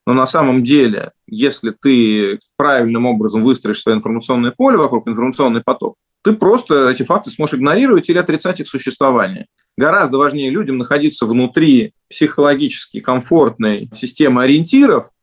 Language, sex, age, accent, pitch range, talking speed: Russian, male, 20-39, native, 120-150 Hz, 135 wpm